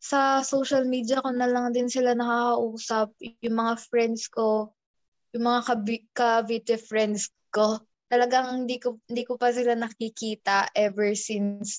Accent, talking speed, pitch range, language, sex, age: native, 145 wpm, 205-255 Hz, Filipino, female, 20-39